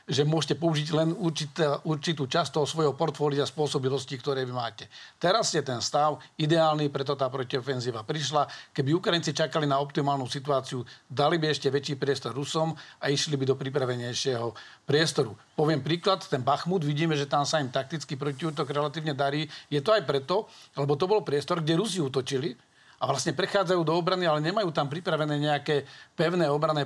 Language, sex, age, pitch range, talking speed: Slovak, male, 40-59, 140-165 Hz, 175 wpm